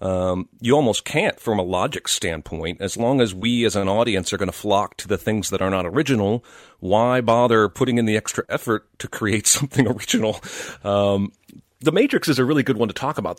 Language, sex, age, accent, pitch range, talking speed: English, male, 40-59, American, 95-120 Hz, 215 wpm